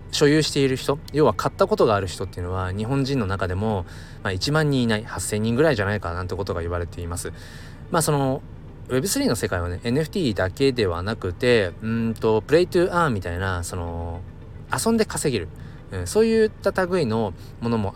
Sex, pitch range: male, 95-135 Hz